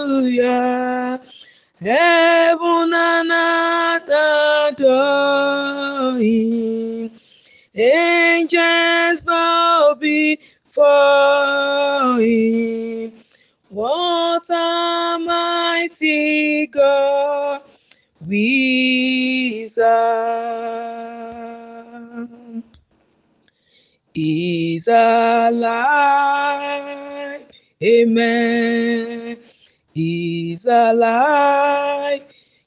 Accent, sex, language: Nigerian, female, English